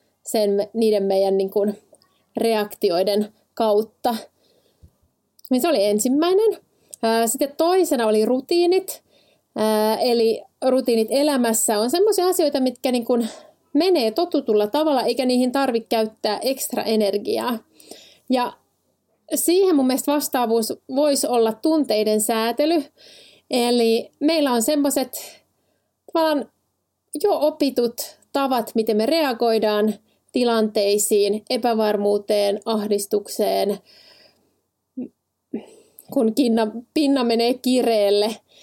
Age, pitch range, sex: 30-49, 215-275 Hz, female